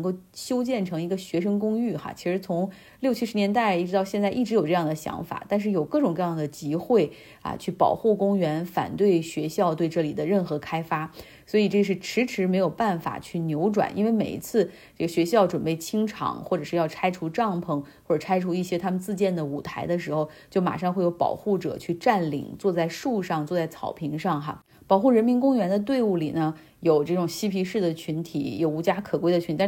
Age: 30-49